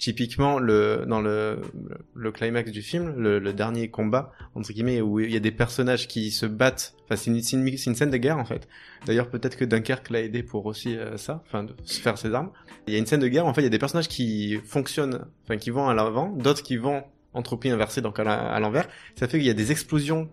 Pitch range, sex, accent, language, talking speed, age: 115-140 Hz, male, French, French, 265 wpm, 20-39